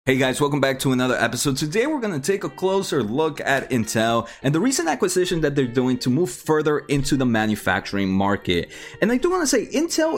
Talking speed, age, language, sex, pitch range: 225 wpm, 20-39, English, male, 125-195 Hz